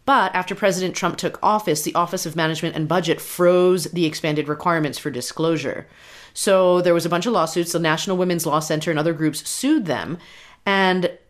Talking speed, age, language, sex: 190 wpm, 30-49, English, female